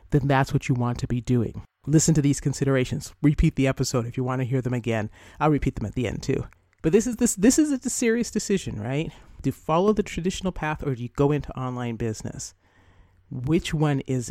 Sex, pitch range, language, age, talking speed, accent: male, 125-150 Hz, English, 40-59, 230 wpm, American